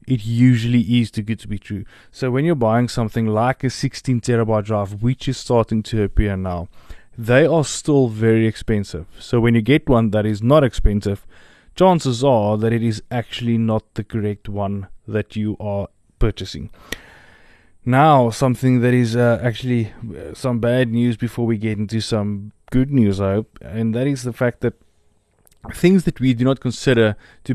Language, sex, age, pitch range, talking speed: English, male, 20-39, 105-120 Hz, 180 wpm